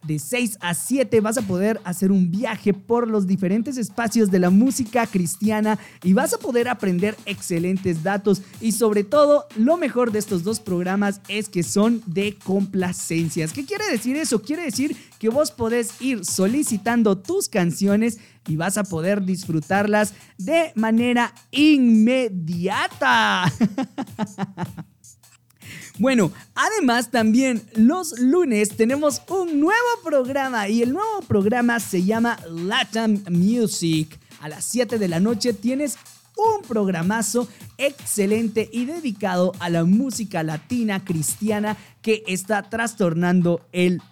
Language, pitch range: Spanish, 185-250 Hz